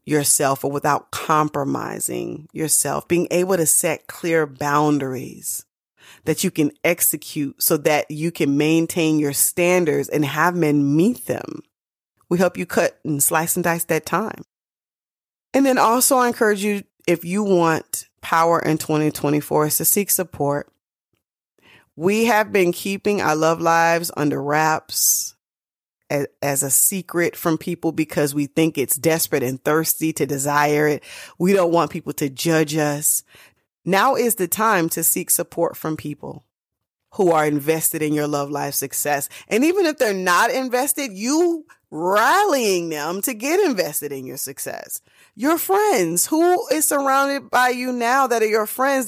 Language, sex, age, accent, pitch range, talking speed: English, female, 30-49, American, 150-215 Hz, 155 wpm